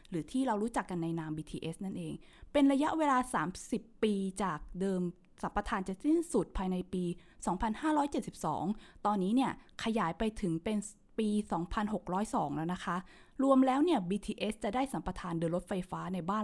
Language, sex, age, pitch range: Thai, female, 20-39, 180-245 Hz